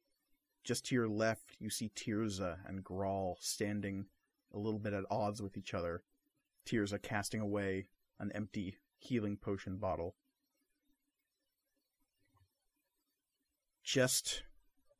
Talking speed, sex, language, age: 110 wpm, male, English, 30-49